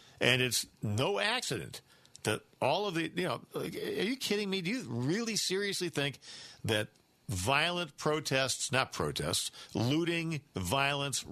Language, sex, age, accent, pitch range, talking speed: English, male, 50-69, American, 110-140 Hz, 140 wpm